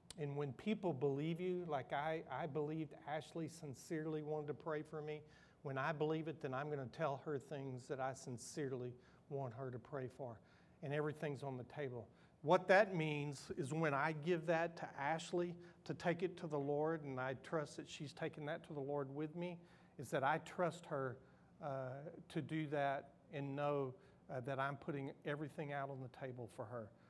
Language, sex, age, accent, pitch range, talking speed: English, male, 50-69, American, 135-170 Hz, 200 wpm